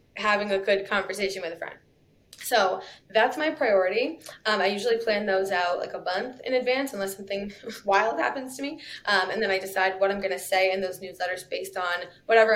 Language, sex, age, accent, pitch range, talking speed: English, female, 20-39, American, 185-220 Hz, 210 wpm